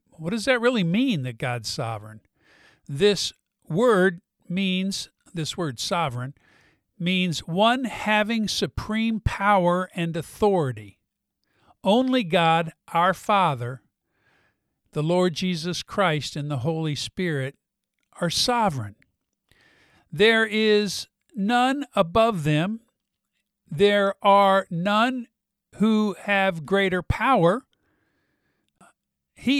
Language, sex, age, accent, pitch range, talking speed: English, male, 50-69, American, 155-210 Hz, 95 wpm